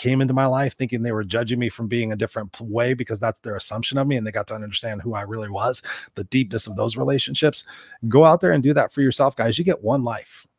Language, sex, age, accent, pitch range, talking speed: English, male, 30-49, American, 115-135 Hz, 265 wpm